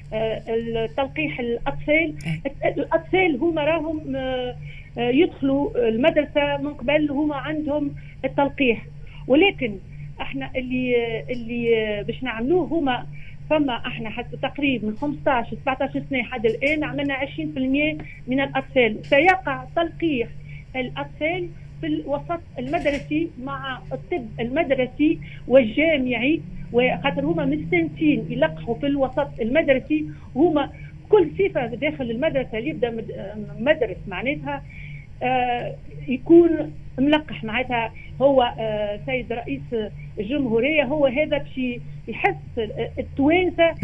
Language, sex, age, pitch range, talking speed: Arabic, female, 40-59, 230-300 Hz, 95 wpm